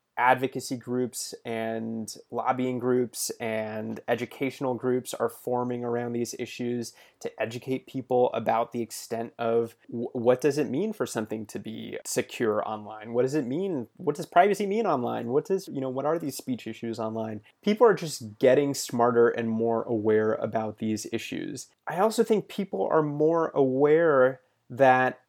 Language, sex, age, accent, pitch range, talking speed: English, male, 20-39, American, 115-135 Hz, 160 wpm